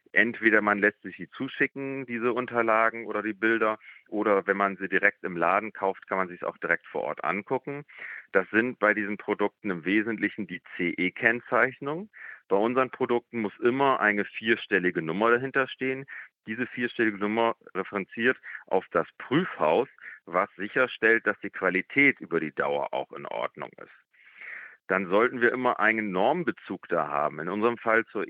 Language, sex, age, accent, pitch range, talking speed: German, male, 40-59, German, 100-125 Hz, 165 wpm